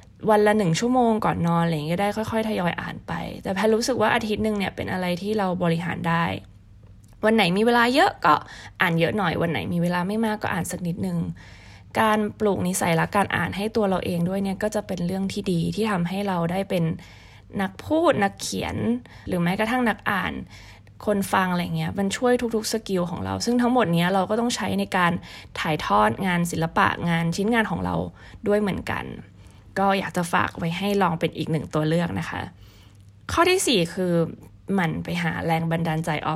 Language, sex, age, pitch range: Thai, female, 20-39, 165-210 Hz